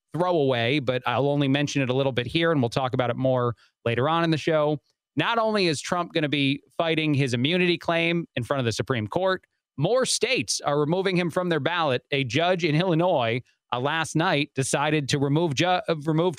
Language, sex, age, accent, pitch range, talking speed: English, male, 30-49, American, 140-185 Hz, 210 wpm